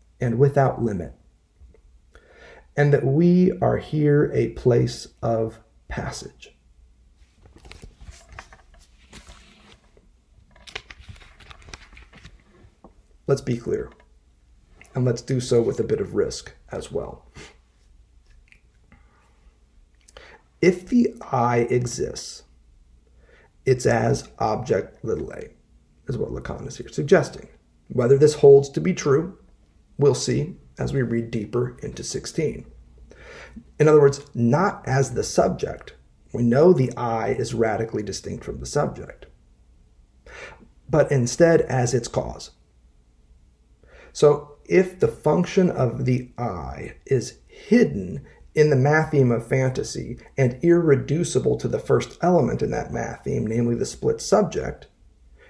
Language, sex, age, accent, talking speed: English, male, 40-59, American, 115 wpm